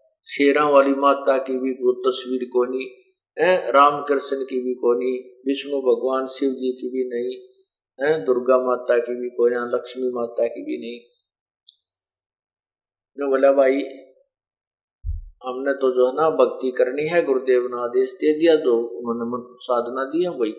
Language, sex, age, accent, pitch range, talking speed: Hindi, male, 50-69, native, 125-175 Hz, 150 wpm